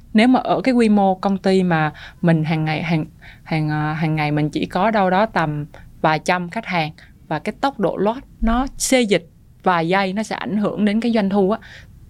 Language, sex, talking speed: Vietnamese, female, 225 wpm